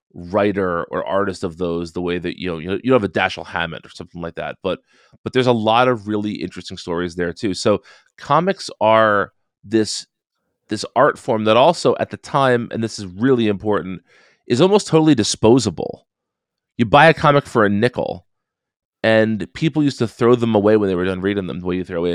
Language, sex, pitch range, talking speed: English, male, 95-115 Hz, 210 wpm